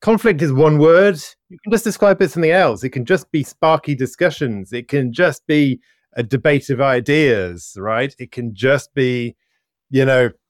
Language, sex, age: English, male, 30-49